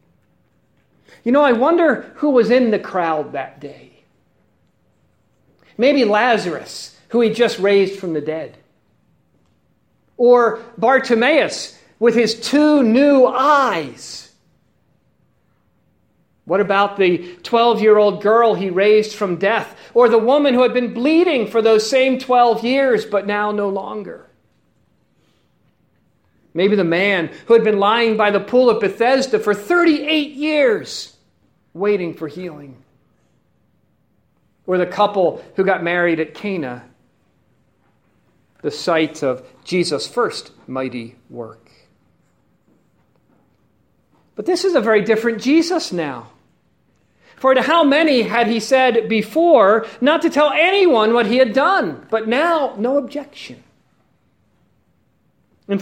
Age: 50-69